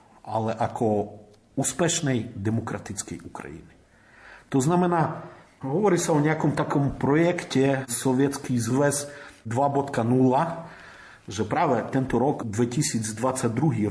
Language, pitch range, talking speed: Slovak, 120-165 Hz, 85 wpm